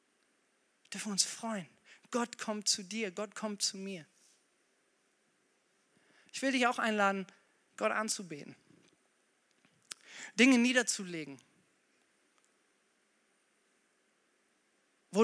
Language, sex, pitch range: German, male, 185-235 Hz